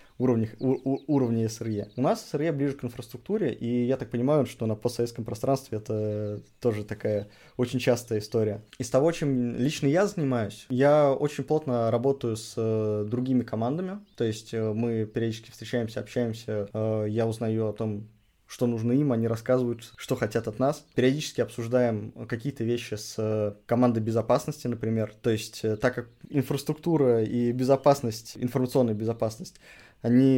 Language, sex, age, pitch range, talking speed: Russian, male, 20-39, 110-130 Hz, 140 wpm